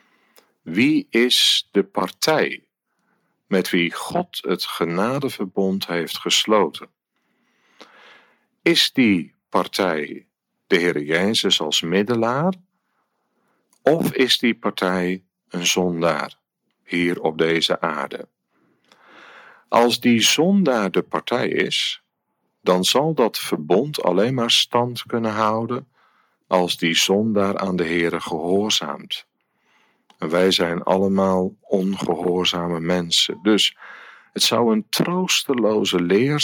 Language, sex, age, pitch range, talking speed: Dutch, male, 50-69, 90-120 Hz, 100 wpm